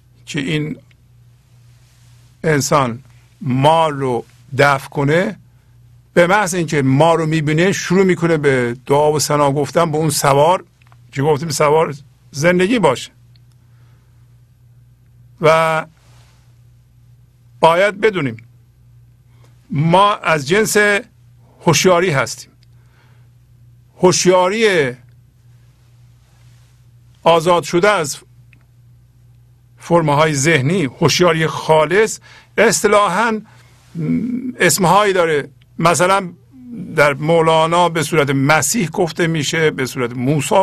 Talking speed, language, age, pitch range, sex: 85 wpm, Persian, 50-69, 120-170 Hz, male